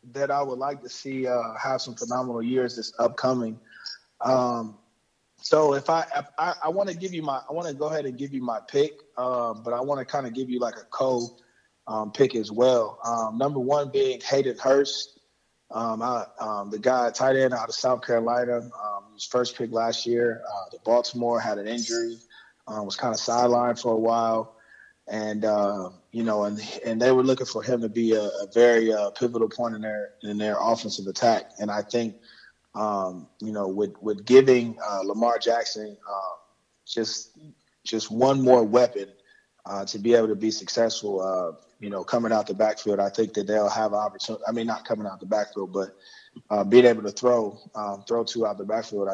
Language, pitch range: English, 105-125 Hz